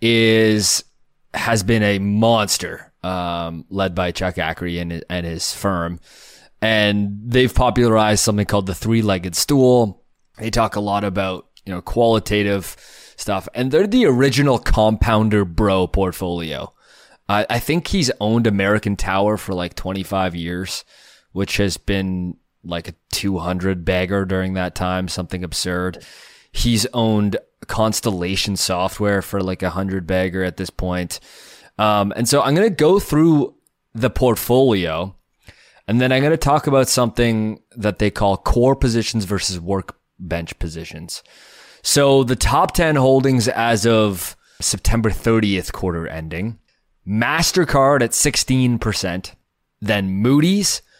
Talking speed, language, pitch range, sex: 140 wpm, English, 95-120 Hz, male